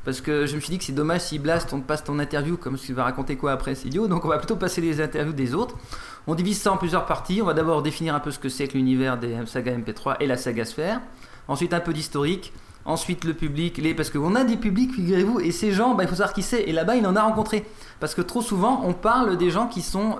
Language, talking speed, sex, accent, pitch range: French, 290 wpm, male, French, 140-180 Hz